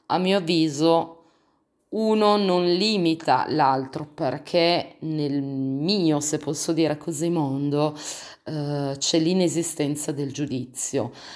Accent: native